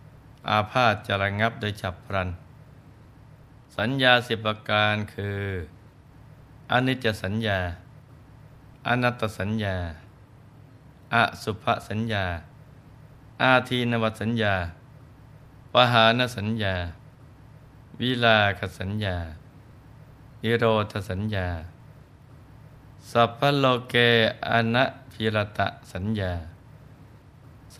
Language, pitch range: Thai, 100-125 Hz